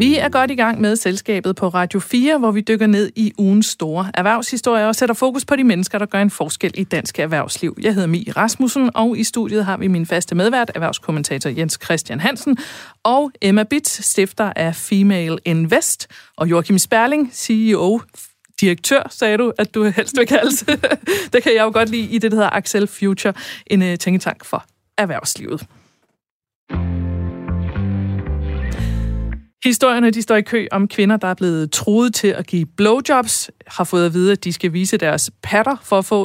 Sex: female